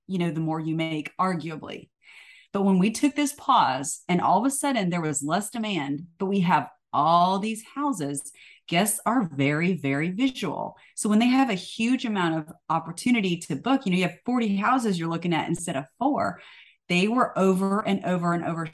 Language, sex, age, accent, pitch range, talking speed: English, female, 30-49, American, 150-200 Hz, 200 wpm